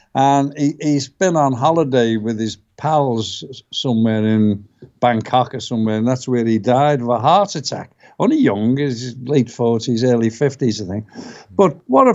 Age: 60-79